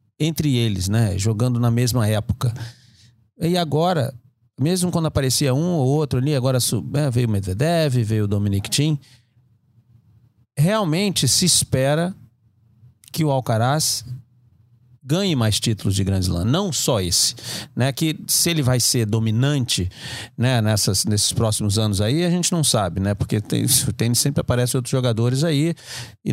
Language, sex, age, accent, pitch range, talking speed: Portuguese, male, 50-69, Brazilian, 115-160 Hz, 155 wpm